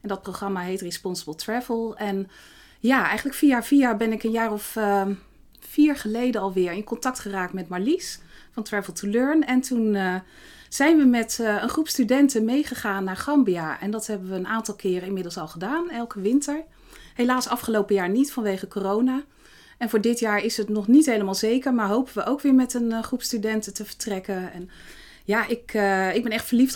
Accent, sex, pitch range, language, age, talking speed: Dutch, female, 200-255 Hz, Dutch, 30-49, 200 wpm